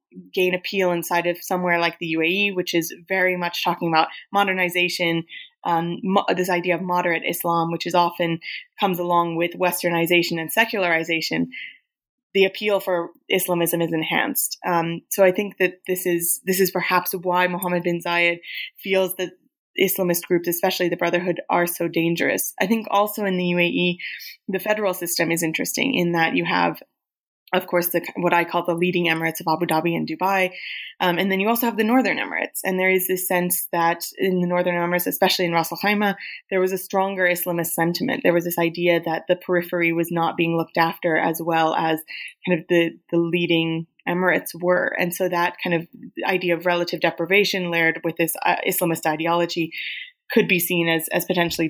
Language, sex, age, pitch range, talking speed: English, female, 20-39, 170-185 Hz, 185 wpm